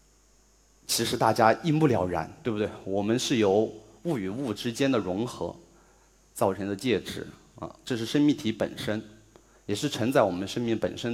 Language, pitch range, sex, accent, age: Chinese, 100-125 Hz, male, native, 30-49